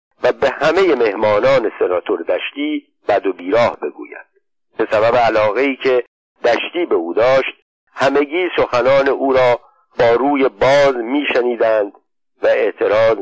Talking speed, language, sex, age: 130 wpm, Persian, male, 50-69